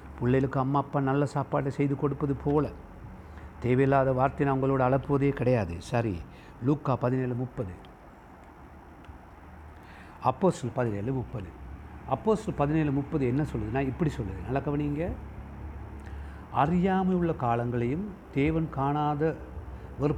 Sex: male